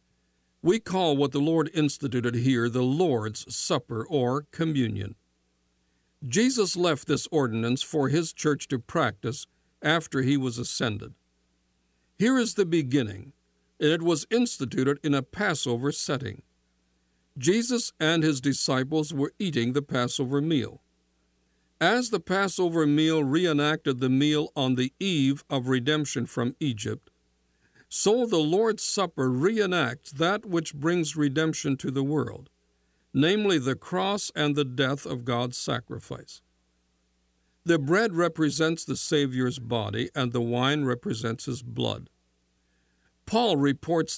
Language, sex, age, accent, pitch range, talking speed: English, male, 60-79, American, 110-165 Hz, 130 wpm